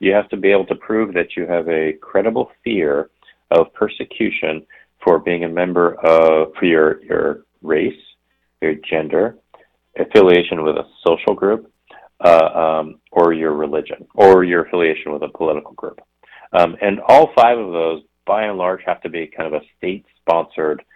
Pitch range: 80-90 Hz